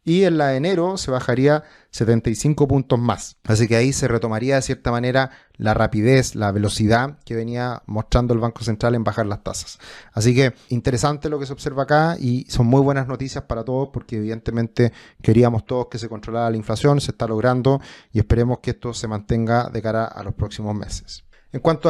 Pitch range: 120-145 Hz